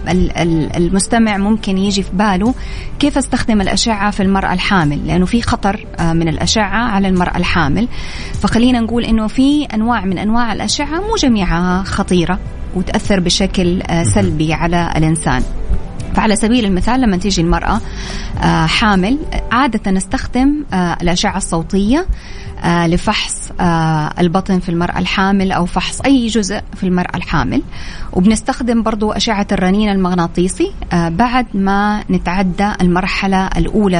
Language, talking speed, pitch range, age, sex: Arabic, 120 wpm, 175-235 Hz, 20-39, female